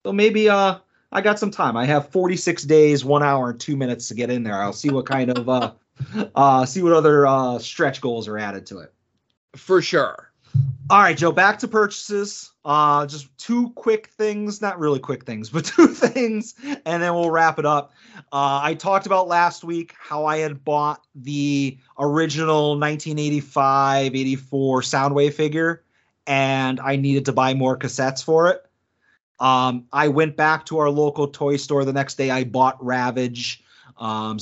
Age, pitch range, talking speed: 30-49, 135-175 Hz, 180 wpm